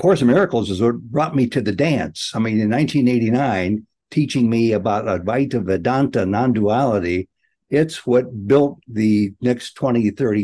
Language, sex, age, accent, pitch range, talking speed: English, male, 60-79, American, 105-130 Hz, 155 wpm